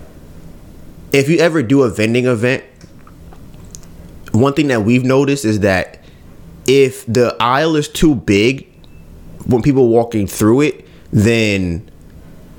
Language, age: English, 20-39